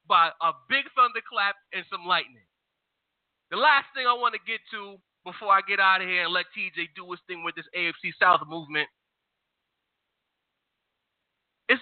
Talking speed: 170 wpm